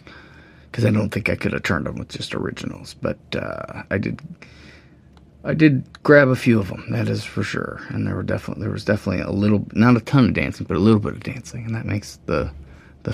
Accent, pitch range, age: American, 80-110 Hz, 30-49